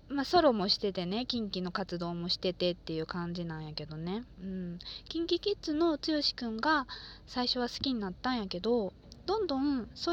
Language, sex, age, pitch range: Japanese, female, 20-39, 185-285 Hz